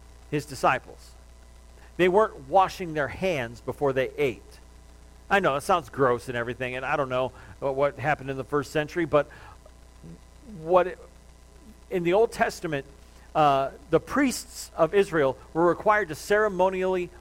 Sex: male